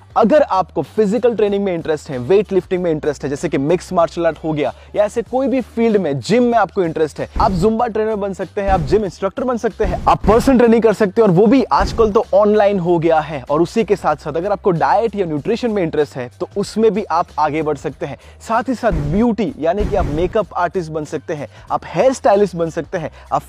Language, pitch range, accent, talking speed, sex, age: Hindi, 160-220 Hz, native, 200 wpm, male, 20-39